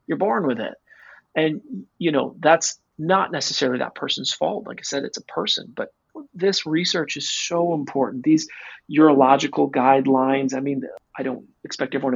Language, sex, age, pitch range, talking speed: English, male, 30-49, 130-165 Hz, 170 wpm